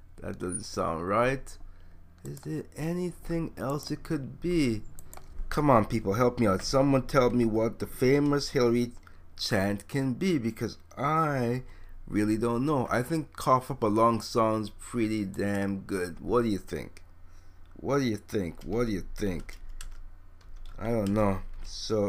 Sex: male